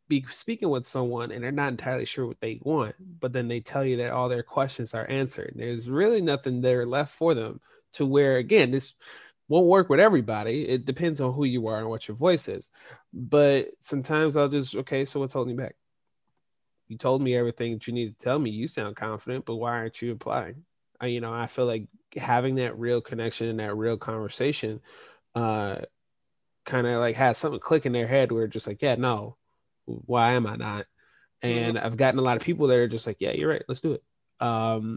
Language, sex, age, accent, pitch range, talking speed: English, male, 20-39, American, 115-140 Hz, 220 wpm